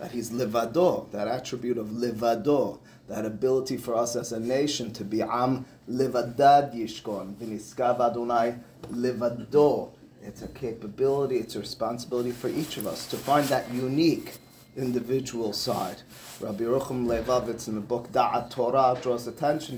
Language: English